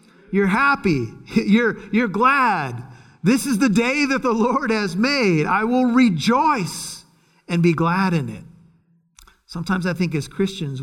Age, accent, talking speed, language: 50-69, American, 150 wpm, English